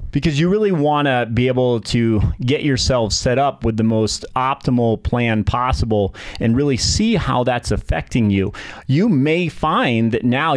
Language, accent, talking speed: English, American, 165 wpm